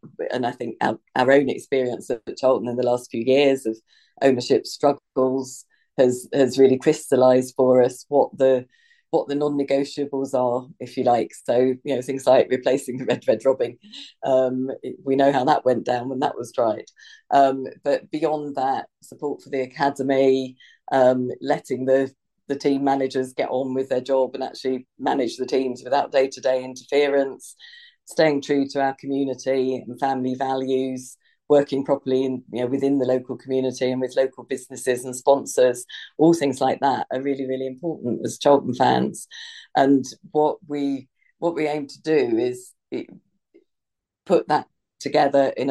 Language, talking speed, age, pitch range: English, 170 wpm, 40-59, 130-140 Hz